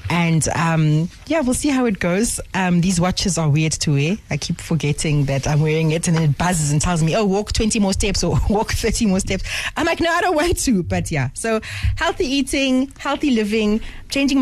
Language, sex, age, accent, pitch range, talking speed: English, female, 30-49, South African, 155-215 Hz, 220 wpm